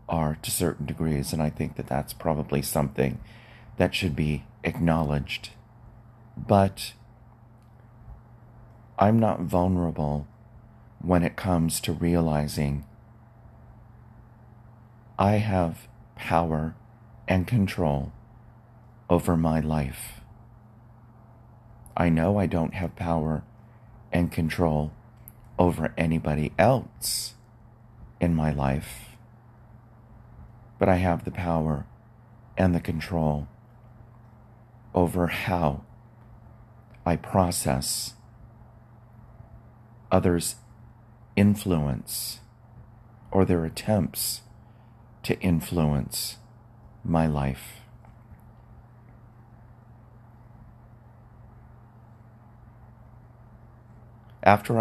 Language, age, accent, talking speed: English, 30-49, American, 75 wpm